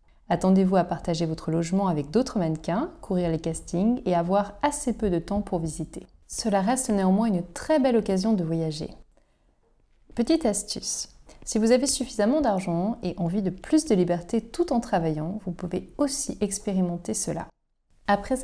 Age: 30-49